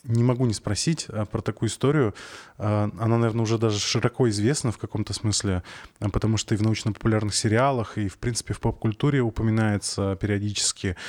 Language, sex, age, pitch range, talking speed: Russian, male, 20-39, 105-125 Hz, 155 wpm